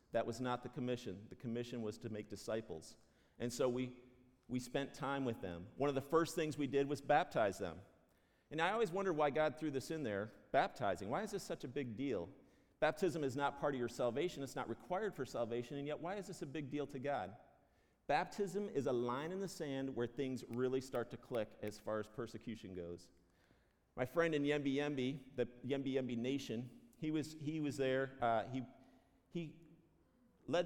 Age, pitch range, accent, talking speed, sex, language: 50-69, 125-165 Hz, American, 200 wpm, male, English